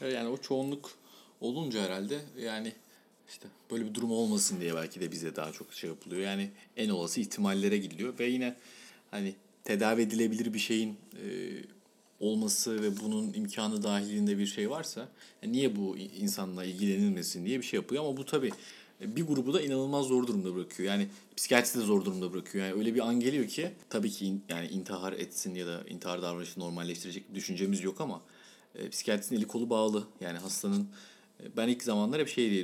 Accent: native